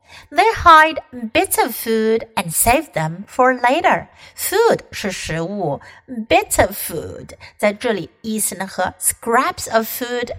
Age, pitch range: 50-69, 195-295 Hz